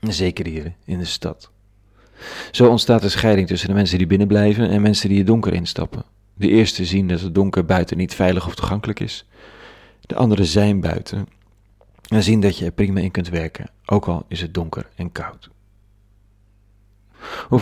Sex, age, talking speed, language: male, 40-59, 180 wpm, Dutch